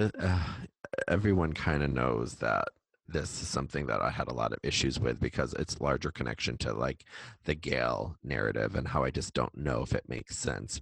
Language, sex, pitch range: English, male, 70-90 Hz